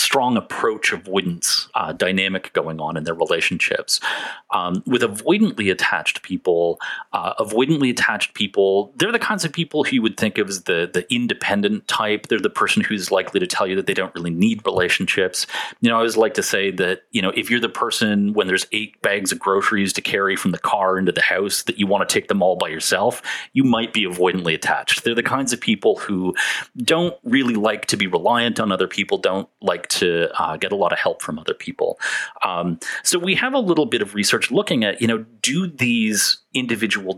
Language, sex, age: English, male, 30-49